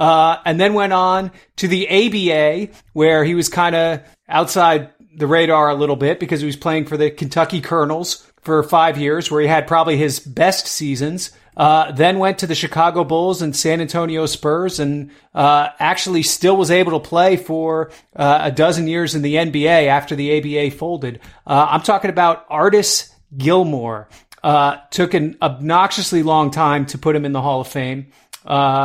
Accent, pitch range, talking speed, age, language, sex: American, 150-175 Hz, 185 wpm, 30-49, English, male